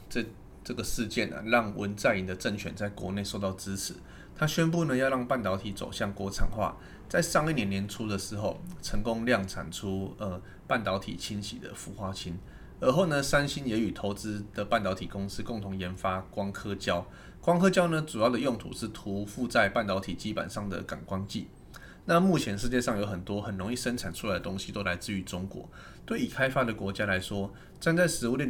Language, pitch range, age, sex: Chinese, 95-120 Hz, 20-39, male